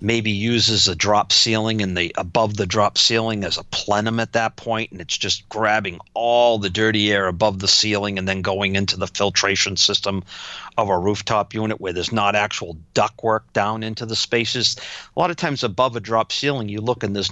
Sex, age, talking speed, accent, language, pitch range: male, 40-59, 210 wpm, American, English, 105-130 Hz